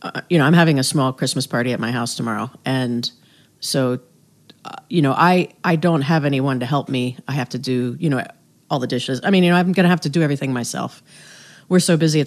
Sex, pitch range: female, 130-165 Hz